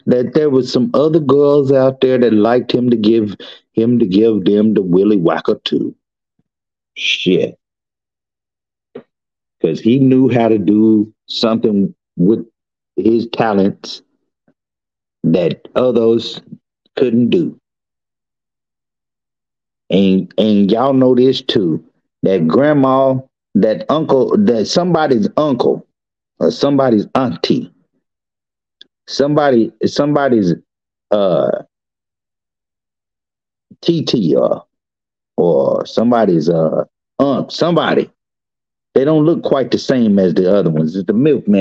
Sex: male